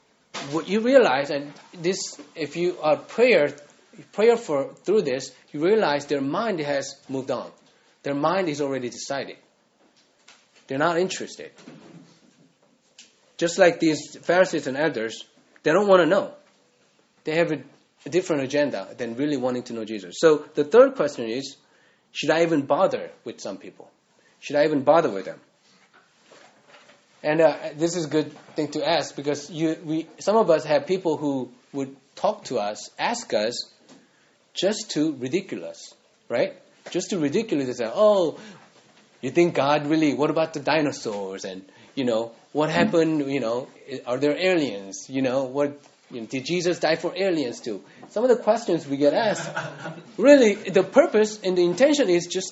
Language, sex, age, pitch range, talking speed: English, male, 30-49, 145-195 Hz, 165 wpm